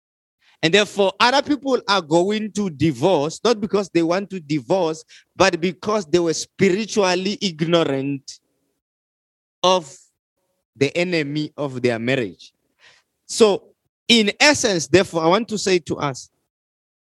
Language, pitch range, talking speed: English, 145-210 Hz, 125 wpm